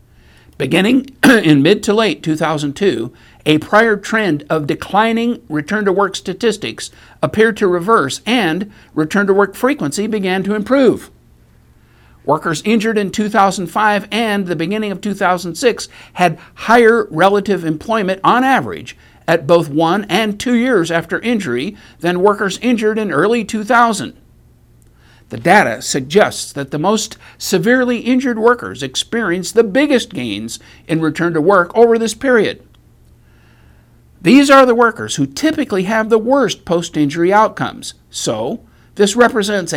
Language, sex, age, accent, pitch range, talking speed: English, male, 60-79, American, 160-225 Hz, 130 wpm